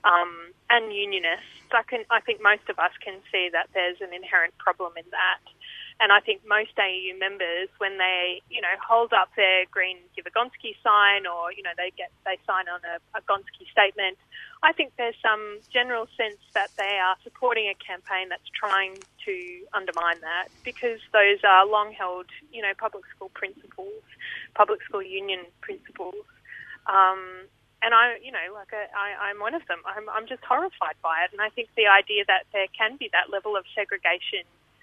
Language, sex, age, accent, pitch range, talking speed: English, female, 20-39, Australian, 190-240 Hz, 190 wpm